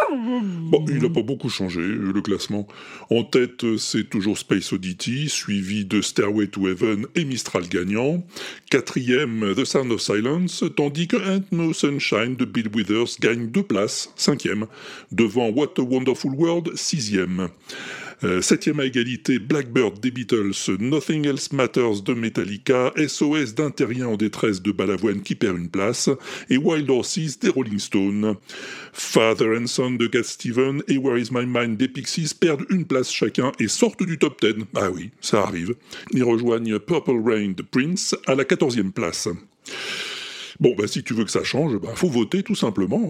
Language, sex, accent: French, female, French